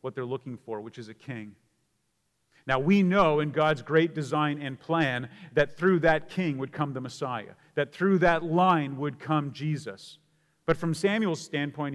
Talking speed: 180 wpm